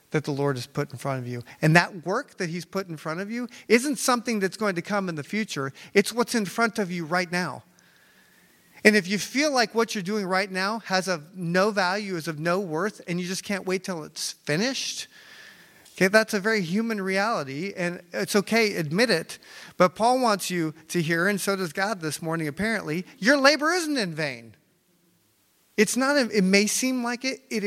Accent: American